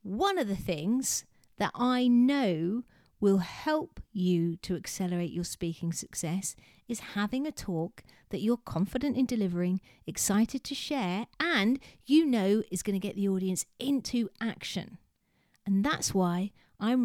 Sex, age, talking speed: female, 40-59, 150 wpm